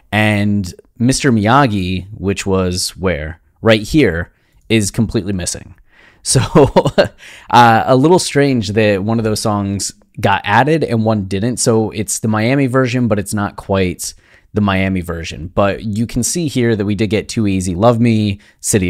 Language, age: English, 30-49